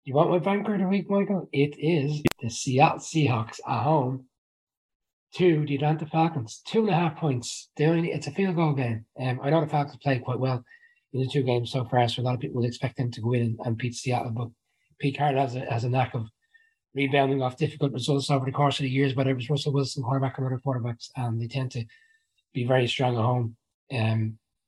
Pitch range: 115-145 Hz